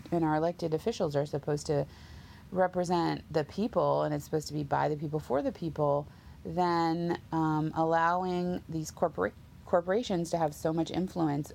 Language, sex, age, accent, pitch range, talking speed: English, female, 30-49, American, 145-180 Hz, 165 wpm